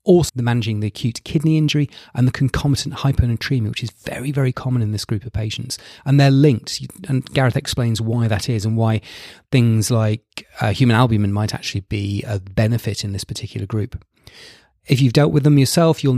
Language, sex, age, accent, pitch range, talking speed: English, male, 30-49, British, 105-130 Hz, 195 wpm